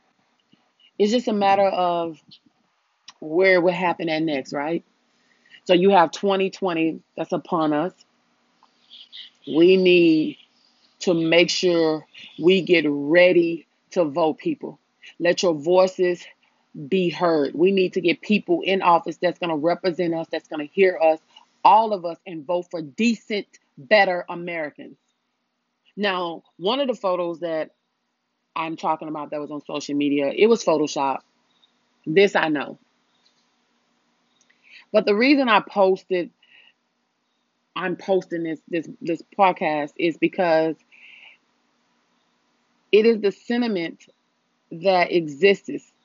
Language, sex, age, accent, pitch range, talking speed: English, female, 30-49, American, 165-205 Hz, 130 wpm